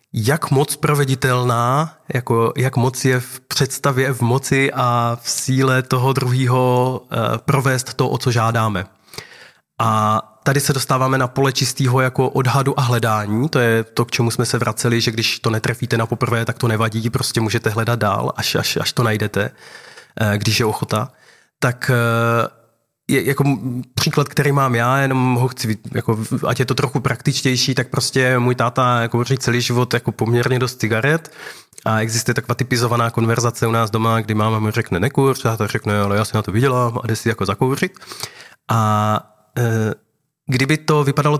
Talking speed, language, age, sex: 170 wpm, Czech, 20-39, male